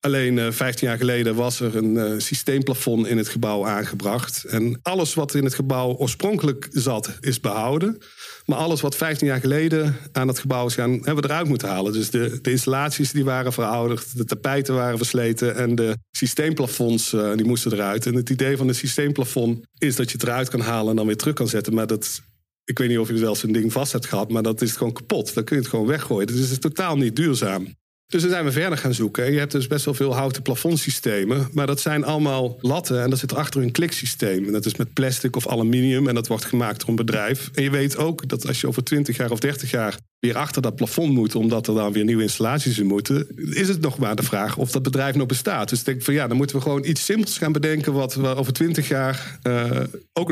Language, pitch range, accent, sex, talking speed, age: Dutch, 115-140 Hz, Dutch, male, 245 wpm, 50-69